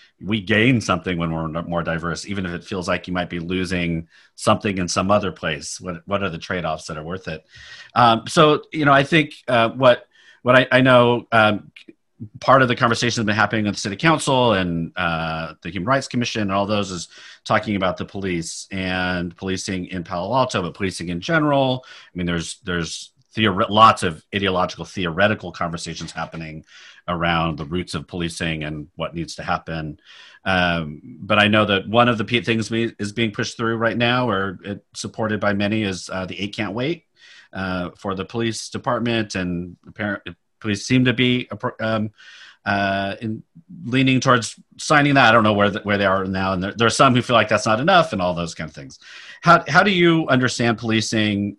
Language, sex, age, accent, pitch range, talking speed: English, male, 40-59, American, 90-120 Hz, 205 wpm